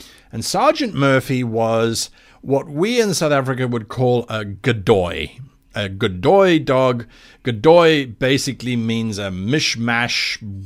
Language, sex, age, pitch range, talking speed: English, male, 50-69, 110-160 Hz, 120 wpm